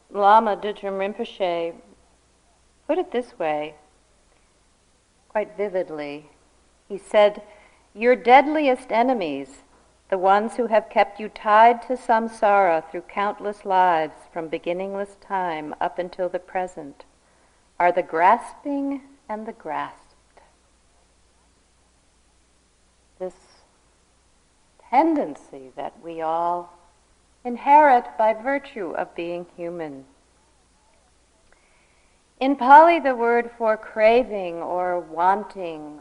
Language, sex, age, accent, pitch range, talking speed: English, female, 50-69, American, 170-235 Hz, 95 wpm